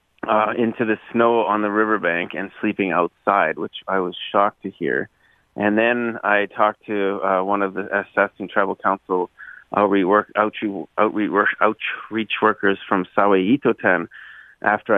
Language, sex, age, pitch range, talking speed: English, male, 30-49, 95-110 Hz, 145 wpm